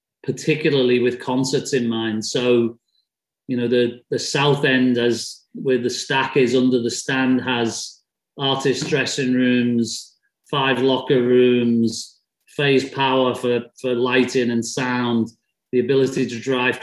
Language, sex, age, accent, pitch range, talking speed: English, male, 40-59, British, 120-135 Hz, 135 wpm